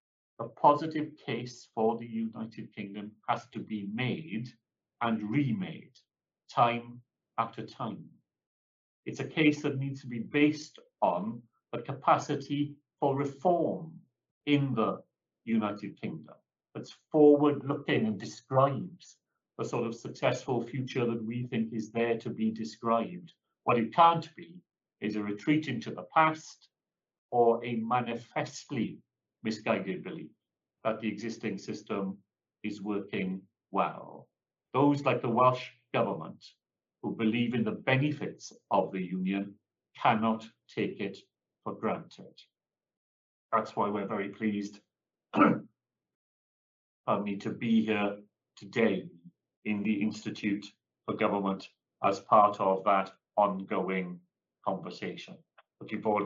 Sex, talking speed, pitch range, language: male, 125 wpm, 105-135 Hz, English